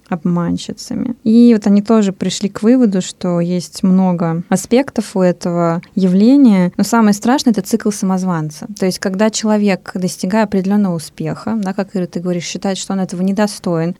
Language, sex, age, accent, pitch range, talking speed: Russian, female, 20-39, native, 180-215 Hz, 165 wpm